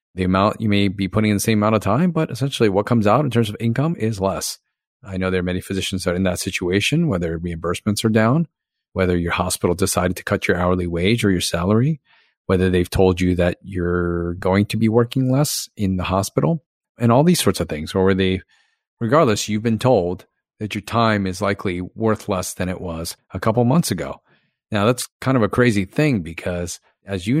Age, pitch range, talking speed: 40-59, 90-115 Hz, 220 wpm